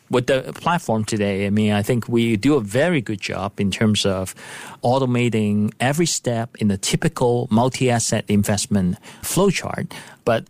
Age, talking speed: 40-59, 155 wpm